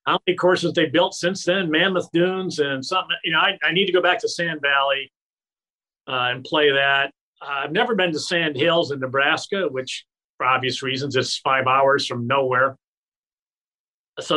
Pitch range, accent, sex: 140-175 Hz, American, male